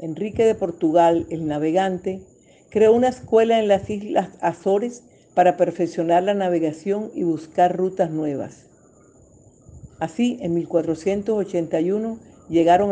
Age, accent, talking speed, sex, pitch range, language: 50-69, American, 110 wpm, female, 165-210 Hz, Spanish